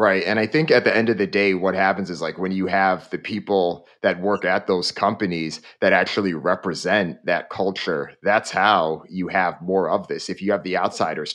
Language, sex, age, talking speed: English, male, 30-49, 215 wpm